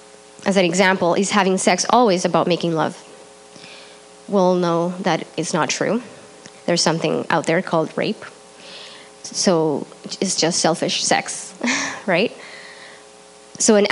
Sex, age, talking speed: female, 20-39, 130 wpm